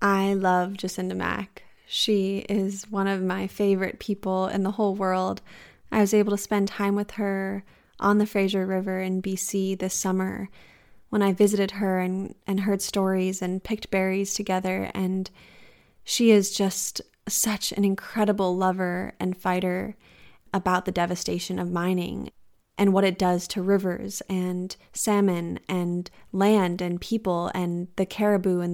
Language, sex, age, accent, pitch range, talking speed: English, female, 20-39, American, 185-205 Hz, 155 wpm